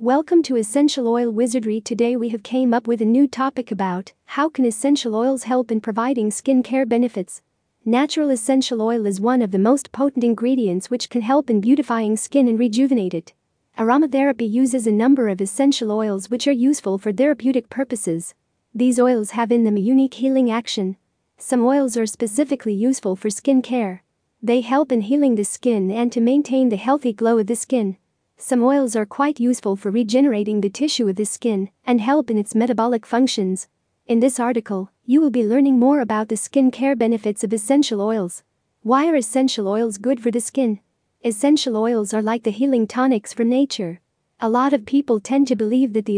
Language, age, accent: English, 40-59, American